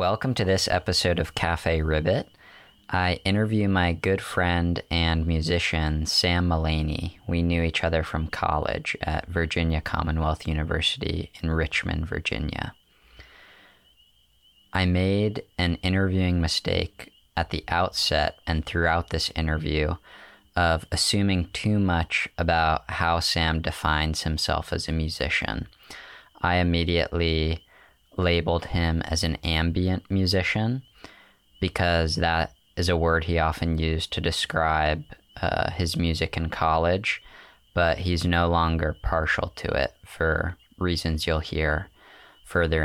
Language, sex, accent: English, male, American